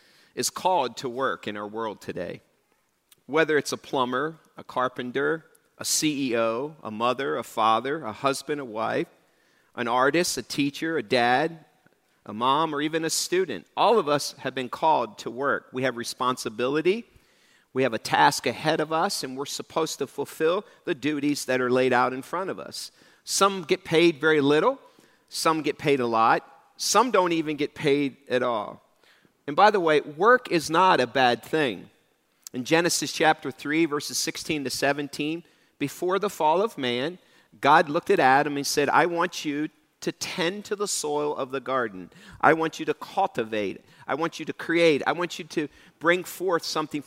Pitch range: 135-170 Hz